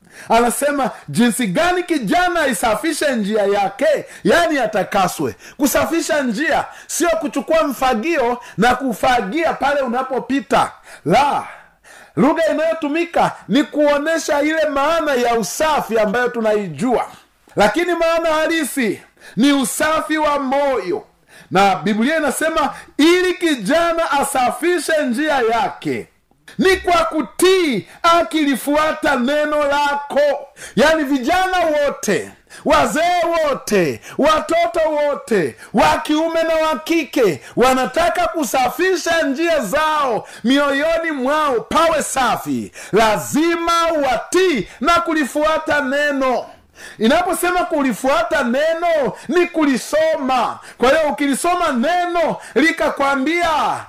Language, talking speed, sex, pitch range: Swahili, 95 wpm, male, 265-330 Hz